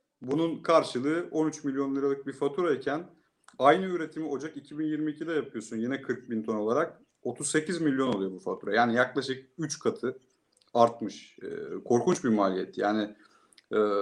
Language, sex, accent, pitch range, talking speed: Turkish, male, native, 125-190 Hz, 140 wpm